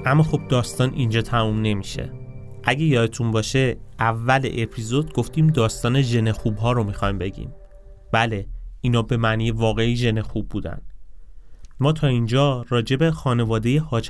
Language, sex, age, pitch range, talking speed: Persian, male, 30-49, 110-145 Hz, 135 wpm